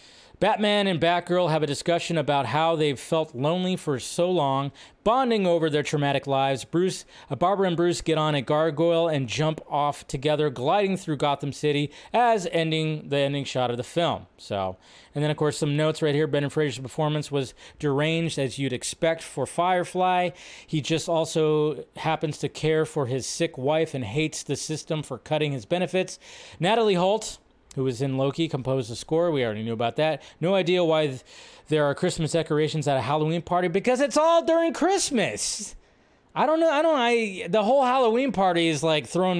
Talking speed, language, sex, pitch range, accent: 190 wpm, English, male, 145-180 Hz, American